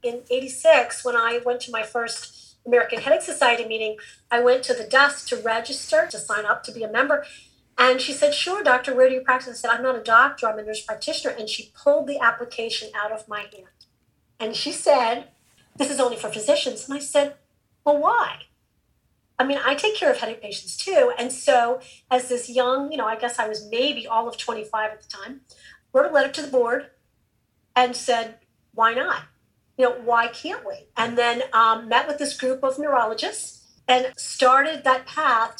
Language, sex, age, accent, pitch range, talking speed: English, female, 40-59, American, 230-270 Hz, 205 wpm